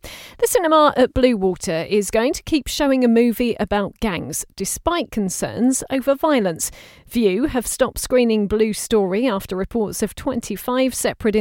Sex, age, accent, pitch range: female, 40-59, British, 200-250 Hz